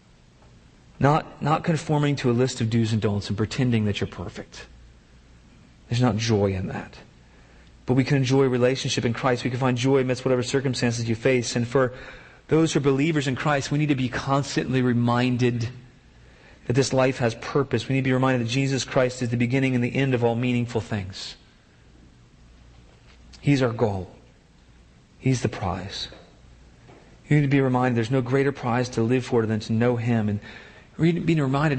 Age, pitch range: 40-59, 110-140 Hz